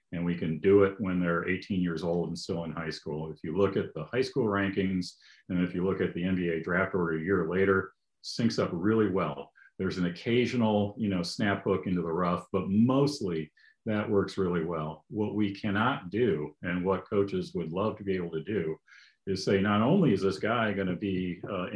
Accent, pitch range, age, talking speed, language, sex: American, 90-110 Hz, 40-59, 220 wpm, English, male